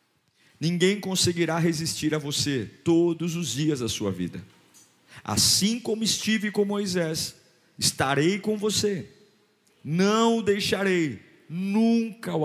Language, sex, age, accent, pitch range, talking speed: Portuguese, male, 50-69, Brazilian, 135-185 Hz, 115 wpm